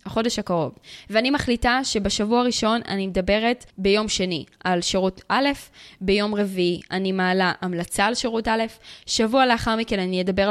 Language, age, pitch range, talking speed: Hebrew, 20-39, 195-230 Hz, 150 wpm